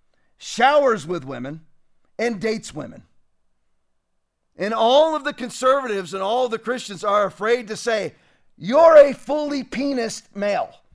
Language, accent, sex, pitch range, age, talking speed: English, American, male, 205-255 Hz, 40-59, 135 wpm